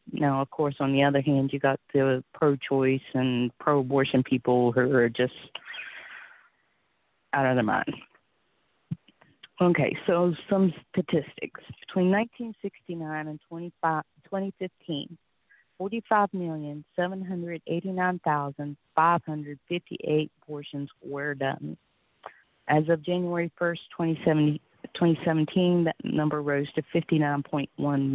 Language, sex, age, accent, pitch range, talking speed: English, female, 30-49, American, 140-175 Hz, 90 wpm